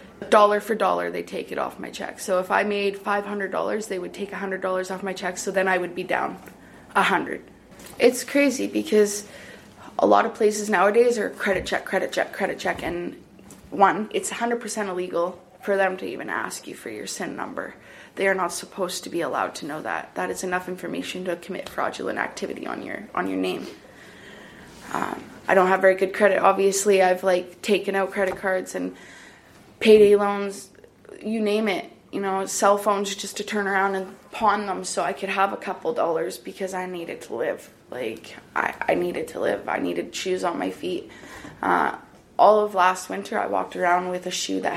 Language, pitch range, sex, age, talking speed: English, 185-205 Hz, female, 20-39, 200 wpm